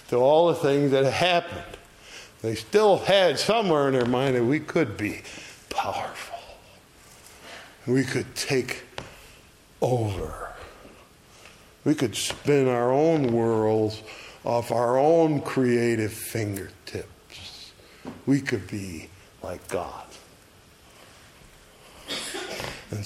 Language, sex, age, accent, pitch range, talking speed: English, male, 60-79, American, 105-135 Hz, 100 wpm